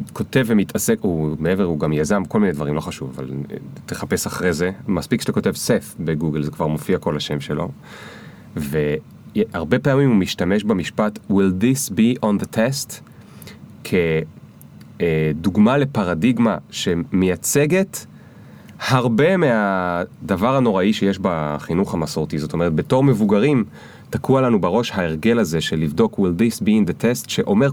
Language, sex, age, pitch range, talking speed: Hebrew, male, 30-49, 90-130 Hz, 130 wpm